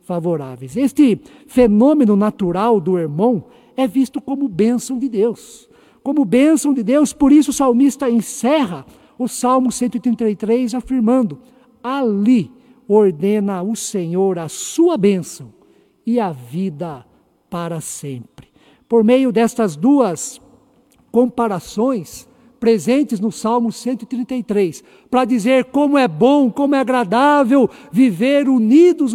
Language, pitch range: Portuguese, 195-255 Hz